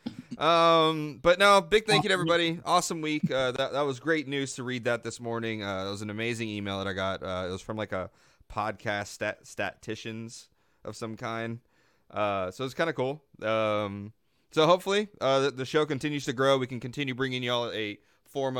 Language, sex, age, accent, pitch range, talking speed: English, male, 30-49, American, 115-150 Hz, 210 wpm